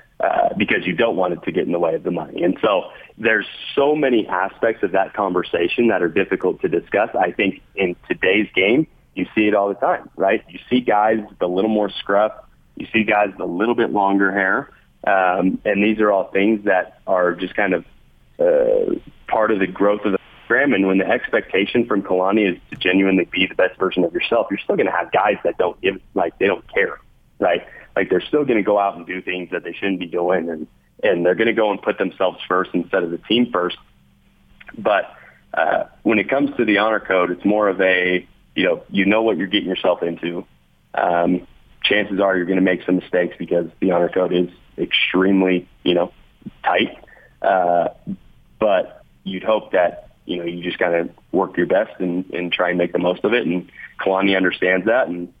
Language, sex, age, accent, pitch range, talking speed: English, male, 30-49, American, 90-105 Hz, 220 wpm